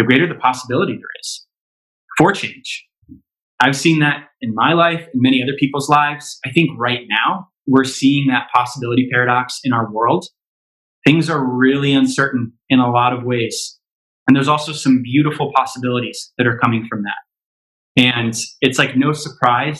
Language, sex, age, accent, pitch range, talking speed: English, male, 20-39, American, 125-145 Hz, 170 wpm